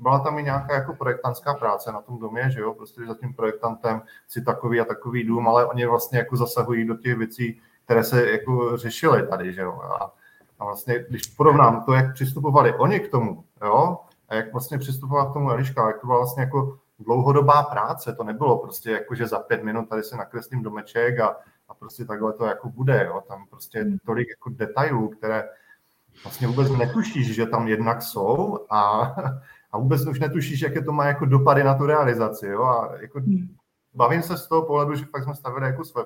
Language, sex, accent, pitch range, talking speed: Czech, male, native, 115-140 Hz, 200 wpm